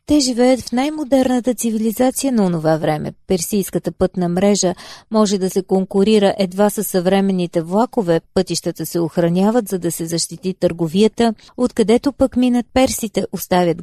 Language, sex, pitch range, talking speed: Bulgarian, female, 180-230 Hz, 140 wpm